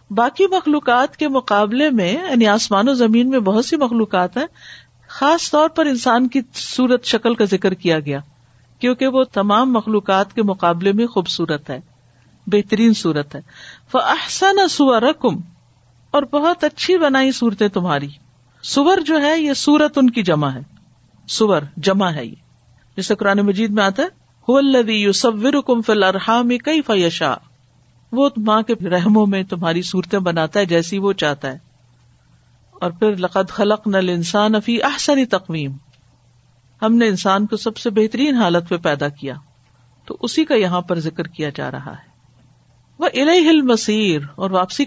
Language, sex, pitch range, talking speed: Urdu, female, 160-240 Hz, 160 wpm